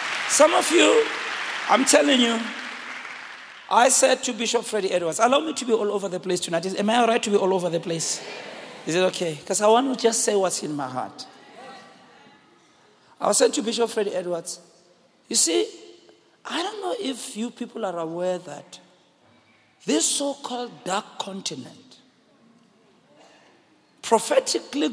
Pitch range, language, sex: 200-275 Hz, English, male